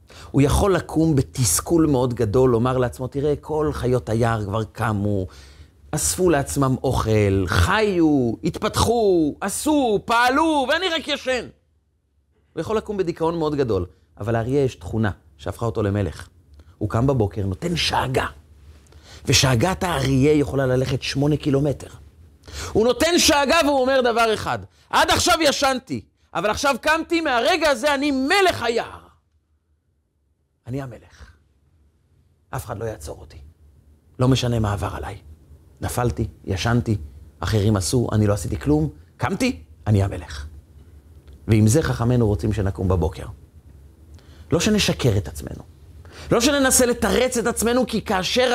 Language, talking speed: Hebrew, 130 wpm